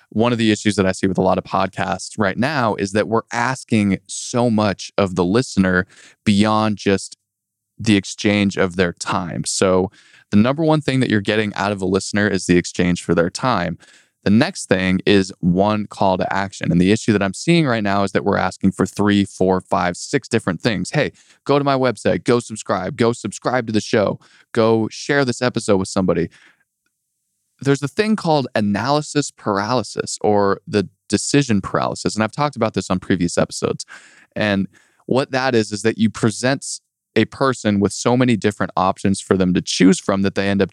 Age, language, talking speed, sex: 20-39, English, 200 wpm, male